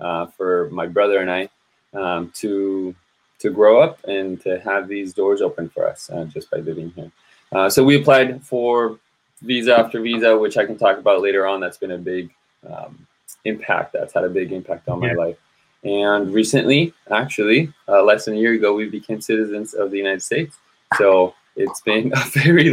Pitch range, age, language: 95-115 Hz, 20-39, English